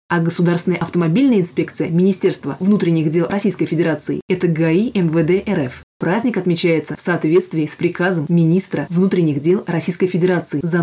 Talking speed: 145 wpm